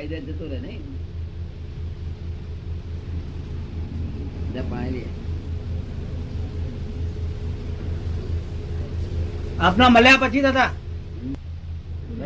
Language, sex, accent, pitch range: Gujarati, female, native, 85-105 Hz